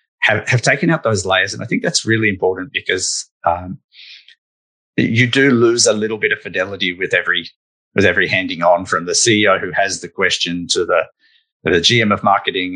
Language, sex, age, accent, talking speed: English, male, 30-49, Australian, 195 wpm